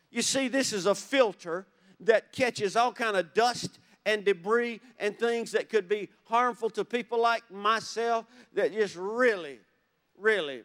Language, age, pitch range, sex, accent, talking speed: English, 50-69, 210-280 Hz, male, American, 160 wpm